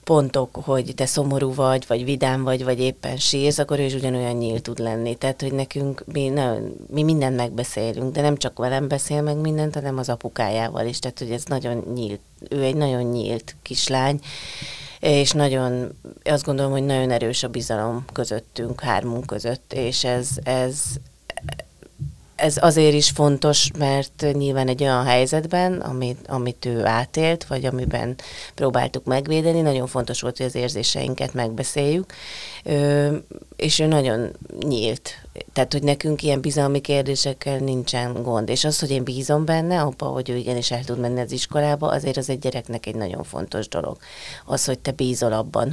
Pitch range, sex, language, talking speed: 125-145 Hz, female, Hungarian, 165 wpm